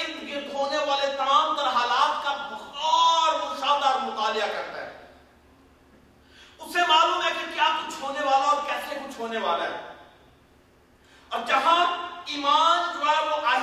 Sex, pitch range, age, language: male, 265-310 Hz, 40-59, Urdu